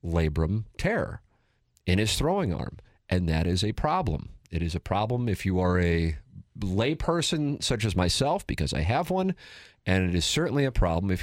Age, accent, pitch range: 40-59, American, 85-100 Hz